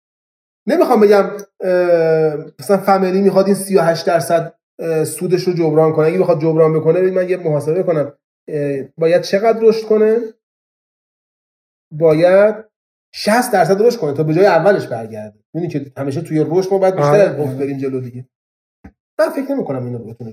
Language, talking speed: Persian, 150 wpm